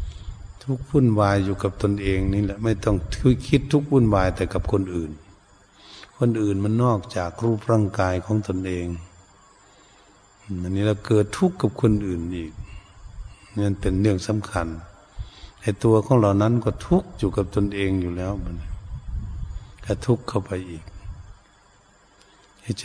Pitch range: 95-110 Hz